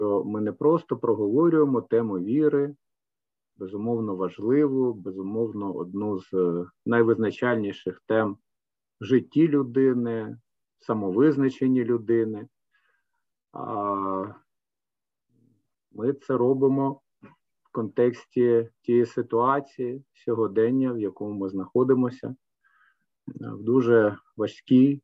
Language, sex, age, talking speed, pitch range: Ukrainian, male, 50-69, 80 wpm, 105-135 Hz